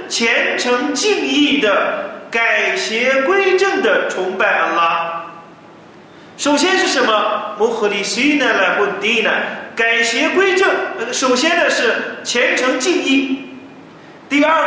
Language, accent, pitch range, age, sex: Chinese, native, 220-325 Hz, 40-59, male